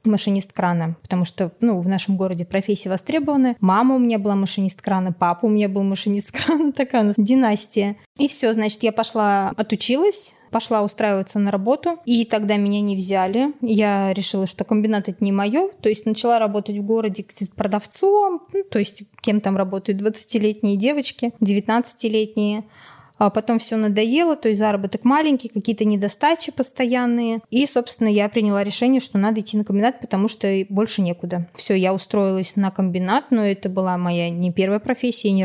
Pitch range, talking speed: 195-230 Hz, 170 wpm